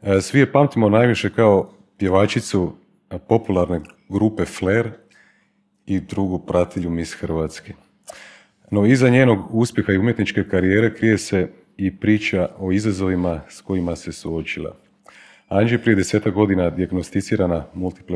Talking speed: 120 wpm